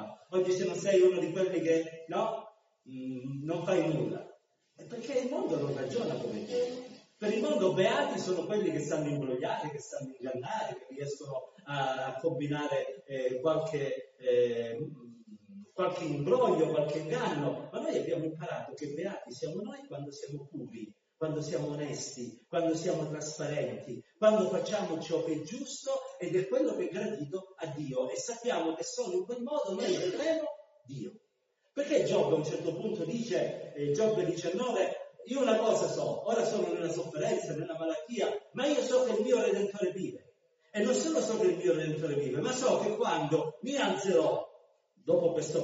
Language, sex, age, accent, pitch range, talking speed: Italian, male, 40-59, native, 155-250 Hz, 170 wpm